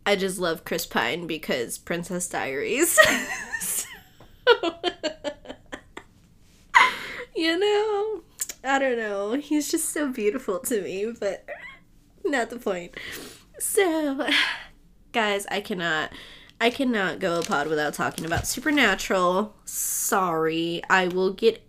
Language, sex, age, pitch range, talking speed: English, female, 20-39, 185-285 Hz, 110 wpm